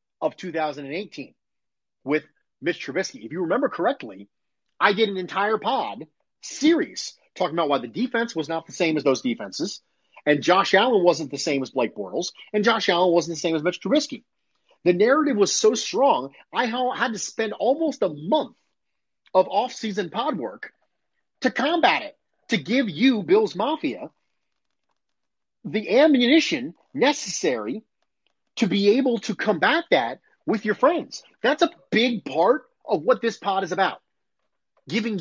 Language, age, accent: English, 30-49, American